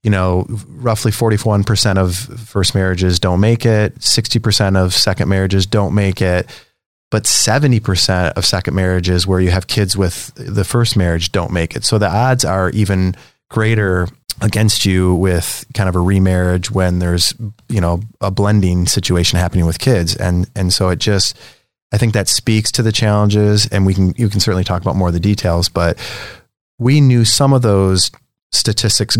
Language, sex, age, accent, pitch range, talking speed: English, male, 30-49, American, 95-110 Hz, 180 wpm